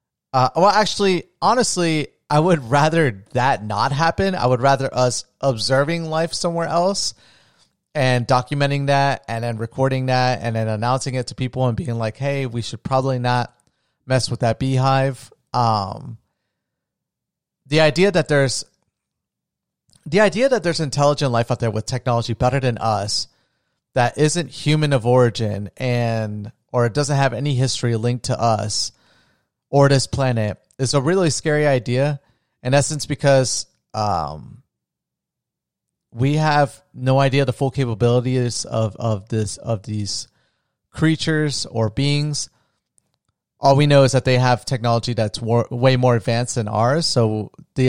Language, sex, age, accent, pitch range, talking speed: English, male, 30-49, American, 120-145 Hz, 150 wpm